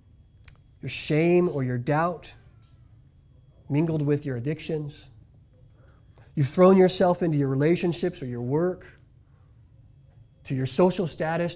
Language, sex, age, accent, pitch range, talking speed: English, male, 30-49, American, 125-185 Hz, 115 wpm